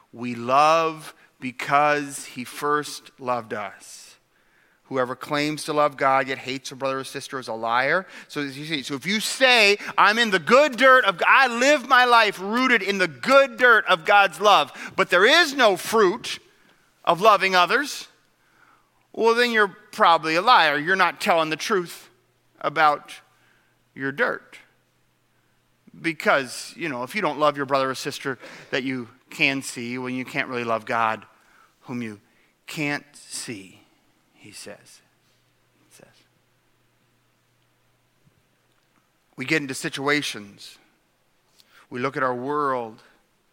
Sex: male